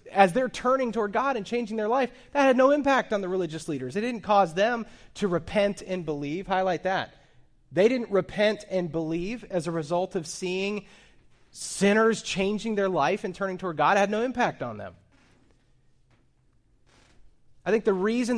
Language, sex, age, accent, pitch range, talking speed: English, male, 30-49, American, 155-200 Hz, 180 wpm